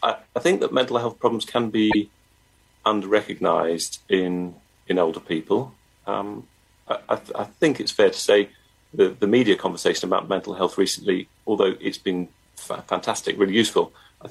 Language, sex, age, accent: English, male, 40-59, British